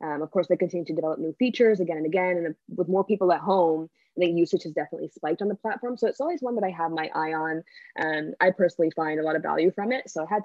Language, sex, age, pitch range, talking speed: English, female, 20-39, 165-215 Hz, 280 wpm